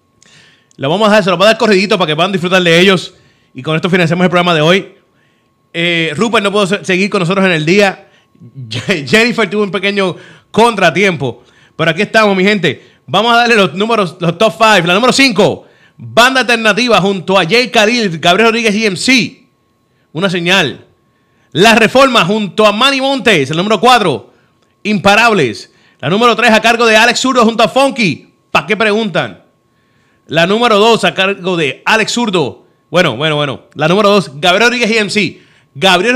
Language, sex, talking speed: Spanish, male, 180 wpm